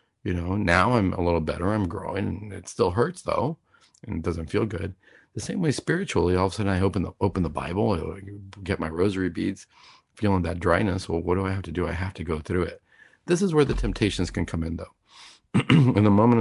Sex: male